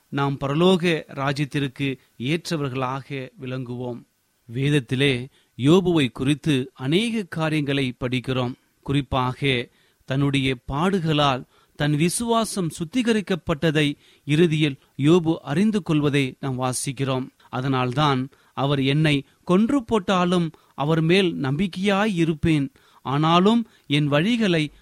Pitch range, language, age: 130-165 Hz, Tamil, 30-49